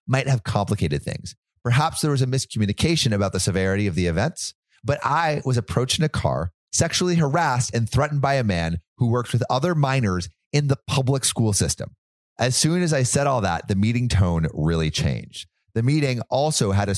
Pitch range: 95-135 Hz